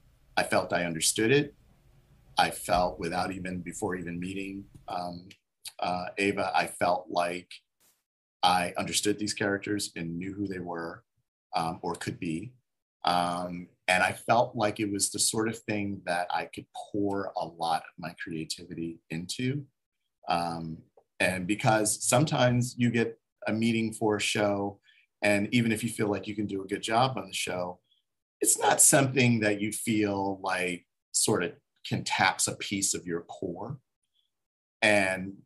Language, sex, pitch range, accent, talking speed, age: English, male, 90-110 Hz, American, 160 wpm, 40-59